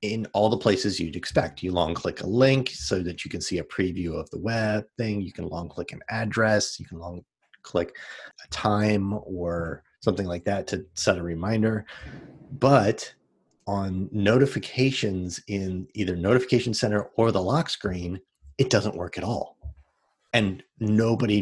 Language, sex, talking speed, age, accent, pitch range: English, male, 170 wpm, 30-49, American, 90-115 Hz